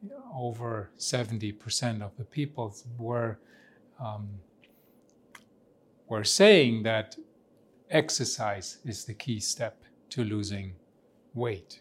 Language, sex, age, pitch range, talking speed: English, male, 40-59, 110-130 Hz, 90 wpm